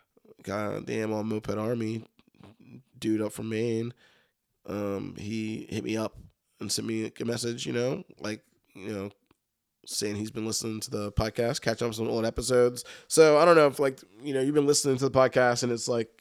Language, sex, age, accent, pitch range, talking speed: English, male, 20-39, American, 105-125 Hz, 200 wpm